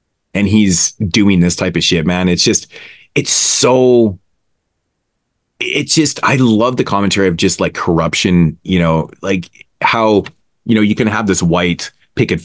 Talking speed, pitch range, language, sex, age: 165 wpm, 85-100 Hz, English, male, 30-49